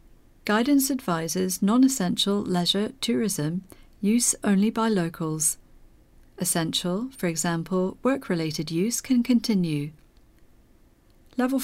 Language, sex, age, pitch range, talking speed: English, female, 40-59, 165-230 Hz, 90 wpm